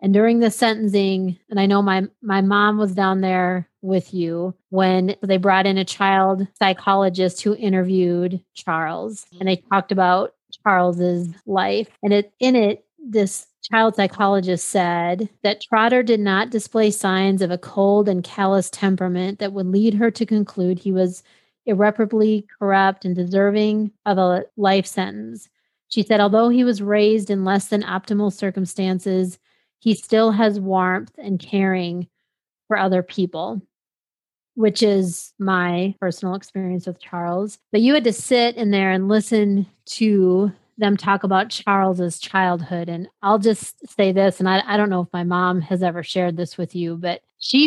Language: English